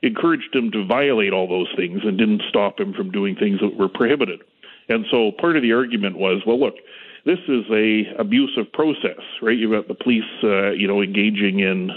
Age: 40-59